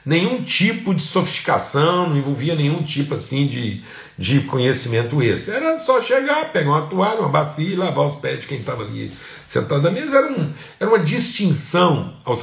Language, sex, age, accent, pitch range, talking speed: Portuguese, male, 60-79, Brazilian, 105-155 Hz, 180 wpm